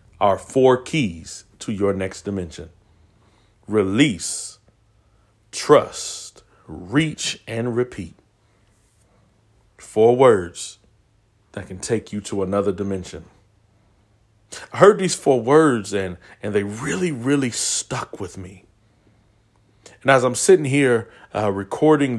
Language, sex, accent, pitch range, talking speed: English, male, American, 100-125 Hz, 110 wpm